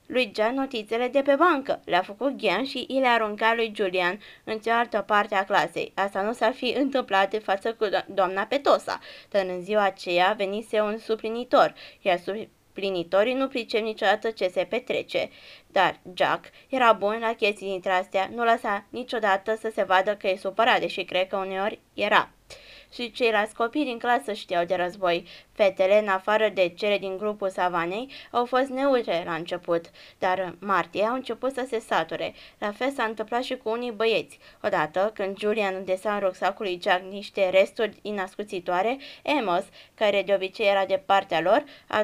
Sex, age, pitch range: female, 20-39, 195-240 Hz